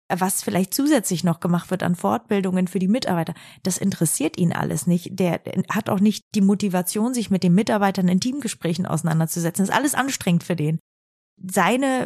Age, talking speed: 30-49, 180 wpm